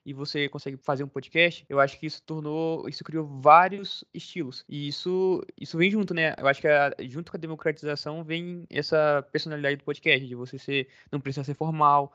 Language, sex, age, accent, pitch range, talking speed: Portuguese, male, 20-39, Brazilian, 135-165 Hz, 205 wpm